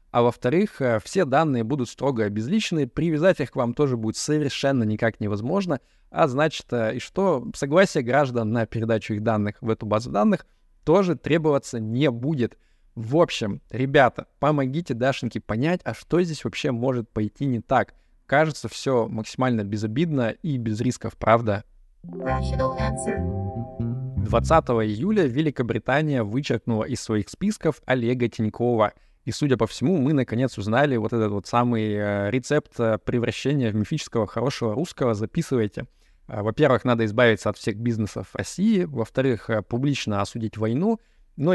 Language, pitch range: Russian, 110-140 Hz